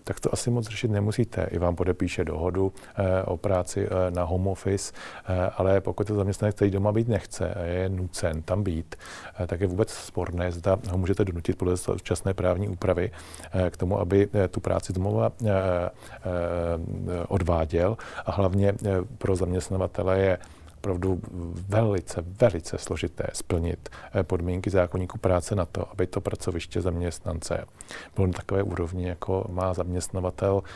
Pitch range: 85-100 Hz